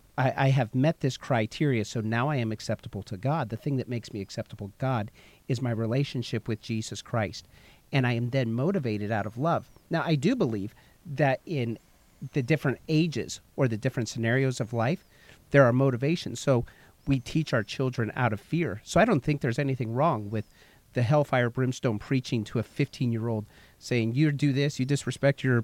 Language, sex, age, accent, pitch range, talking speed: English, male, 40-59, American, 115-140 Hz, 190 wpm